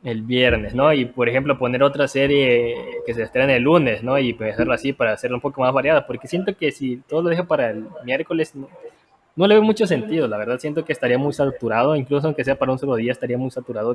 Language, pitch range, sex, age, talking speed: Spanish, 120-160 Hz, male, 20-39, 245 wpm